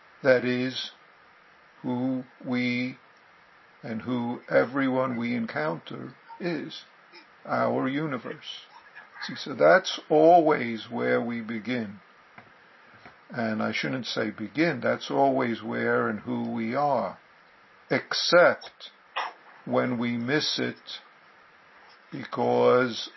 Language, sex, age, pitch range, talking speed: English, male, 60-79, 115-130 Hz, 95 wpm